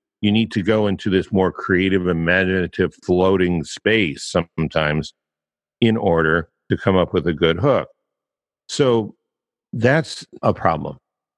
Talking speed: 130 wpm